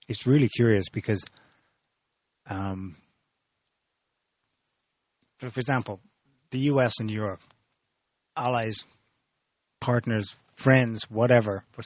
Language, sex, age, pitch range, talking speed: English, male, 30-49, 105-130 Hz, 85 wpm